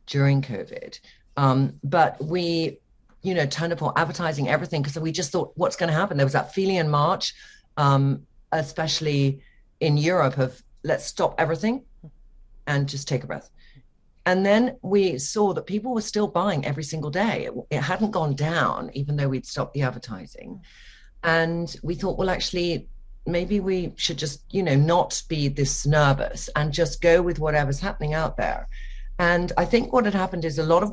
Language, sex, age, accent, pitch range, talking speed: English, female, 40-59, British, 135-175 Hz, 180 wpm